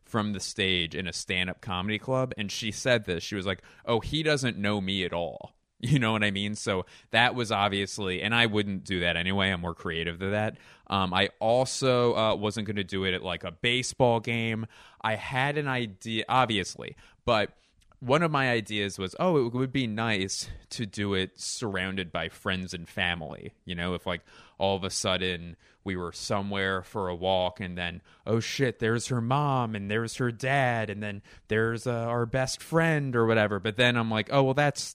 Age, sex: 30-49, male